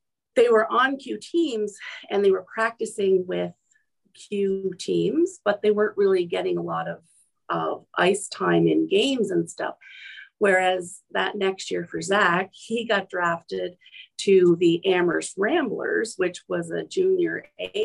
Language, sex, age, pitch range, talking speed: English, female, 40-59, 185-305 Hz, 150 wpm